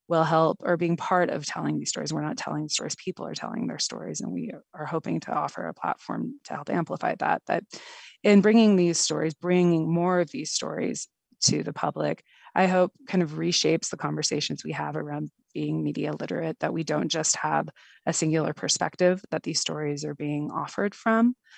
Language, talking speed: English, 195 wpm